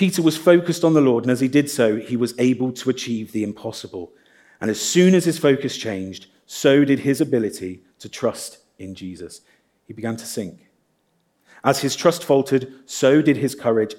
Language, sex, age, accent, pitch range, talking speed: English, male, 40-59, British, 110-140 Hz, 195 wpm